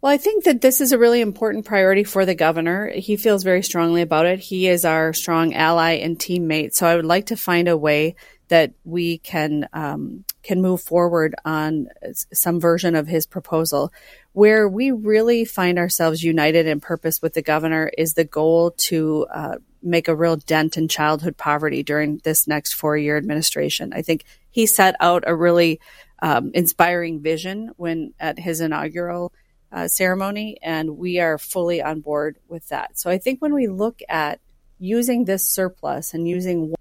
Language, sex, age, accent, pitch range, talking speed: English, female, 30-49, American, 160-190 Hz, 185 wpm